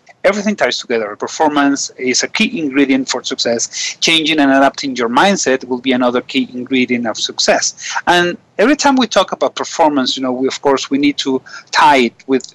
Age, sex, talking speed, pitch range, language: 40-59, male, 190 wpm, 125-165 Hz, English